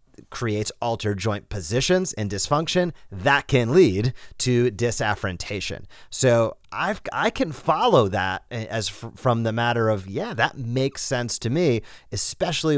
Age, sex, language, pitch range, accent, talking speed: 30-49, male, English, 110-150 Hz, American, 130 wpm